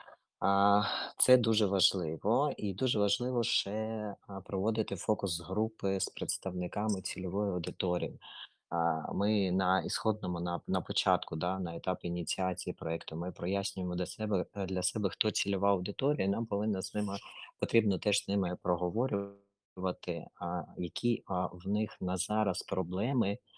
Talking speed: 120 wpm